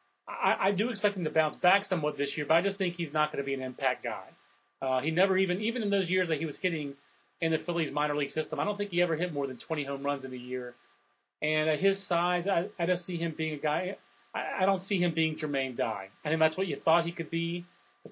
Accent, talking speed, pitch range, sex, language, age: American, 290 wpm, 135-170 Hz, male, English, 30-49